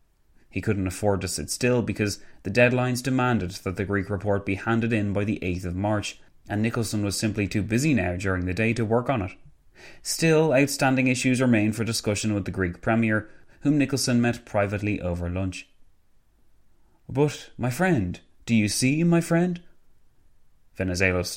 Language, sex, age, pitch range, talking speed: English, male, 30-49, 90-120 Hz, 170 wpm